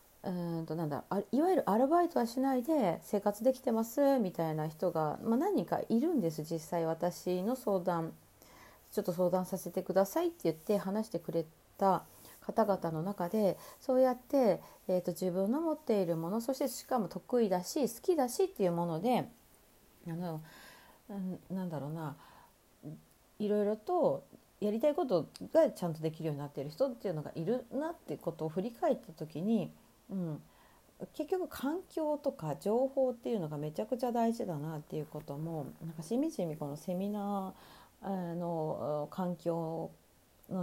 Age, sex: 40-59, female